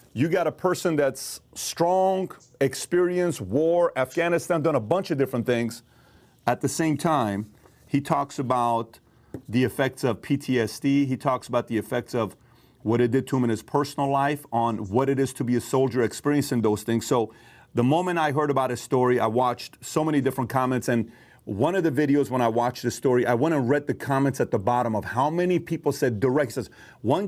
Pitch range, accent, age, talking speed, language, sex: 120-145 Hz, American, 40-59, 205 wpm, English, male